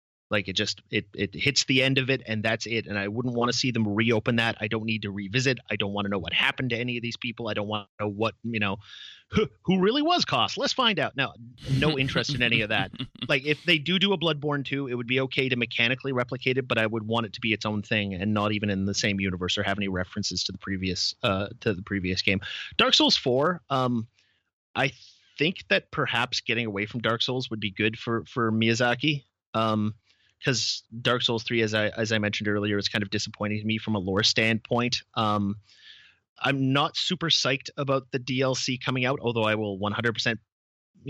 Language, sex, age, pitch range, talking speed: English, male, 30-49, 105-130 Hz, 235 wpm